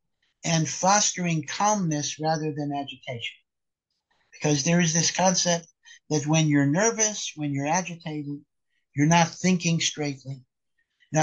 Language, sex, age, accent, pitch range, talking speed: English, male, 60-79, American, 140-180 Hz, 125 wpm